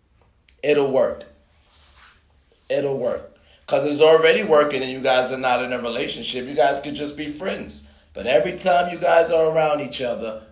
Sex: male